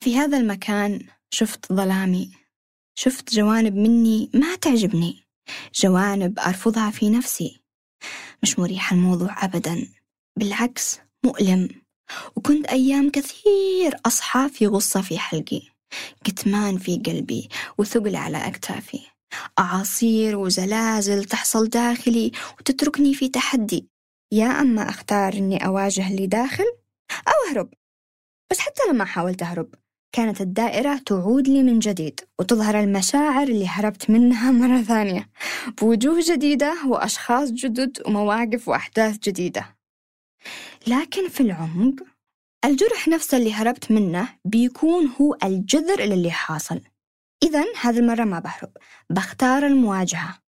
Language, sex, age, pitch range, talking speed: Arabic, female, 20-39, 195-260 Hz, 115 wpm